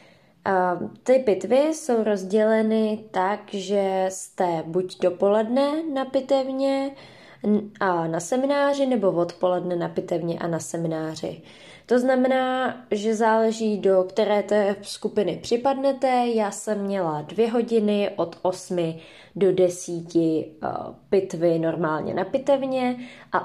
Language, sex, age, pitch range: Czech, female, 20-39, 175-240 Hz